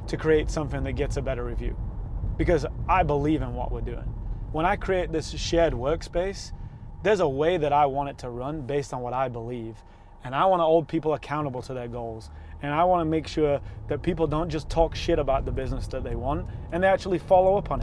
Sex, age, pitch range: male, 30-49, 120-160 Hz